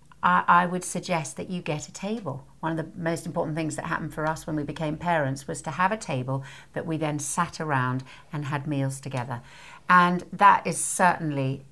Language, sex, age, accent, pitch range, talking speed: English, female, 60-79, British, 140-180 Hz, 205 wpm